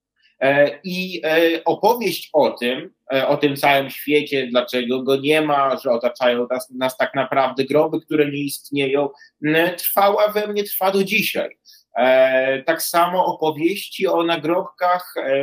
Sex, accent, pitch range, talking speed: male, native, 135-165 Hz, 130 wpm